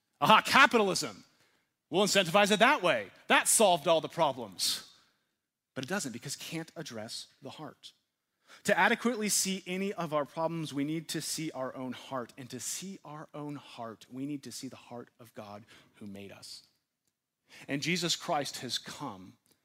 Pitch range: 125-170 Hz